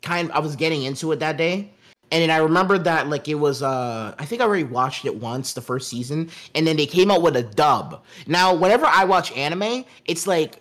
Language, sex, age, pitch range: English, male, 20-39, 145-190 Hz